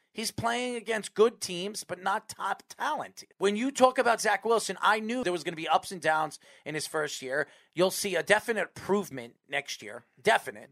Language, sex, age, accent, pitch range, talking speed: English, male, 40-59, American, 175-215 Hz, 205 wpm